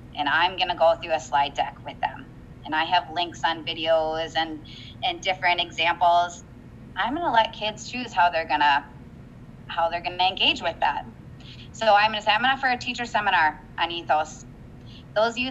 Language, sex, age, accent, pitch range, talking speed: English, female, 20-39, American, 160-215 Hz, 190 wpm